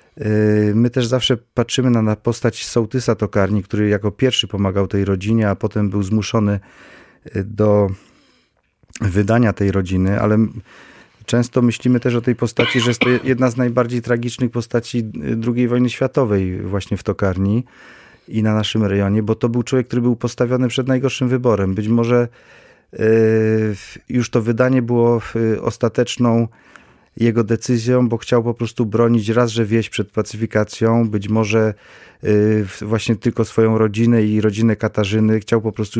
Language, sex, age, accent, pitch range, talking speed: Polish, male, 30-49, native, 105-120 Hz, 145 wpm